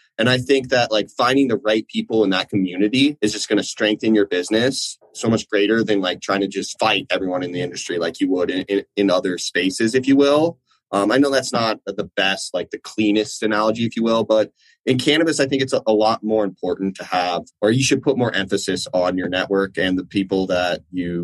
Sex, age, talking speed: male, 20-39, 235 wpm